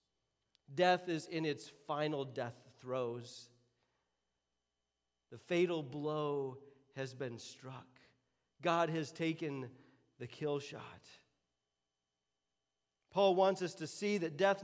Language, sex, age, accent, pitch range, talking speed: English, male, 40-59, American, 115-180 Hz, 105 wpm